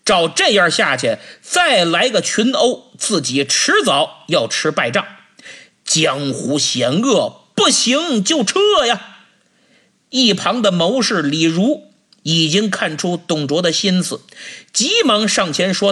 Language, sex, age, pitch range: Chinese, male, 50-69, 170-260 Hz